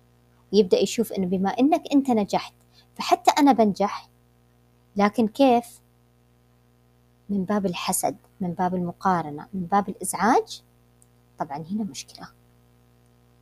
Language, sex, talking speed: Arabic, male, 105 wpm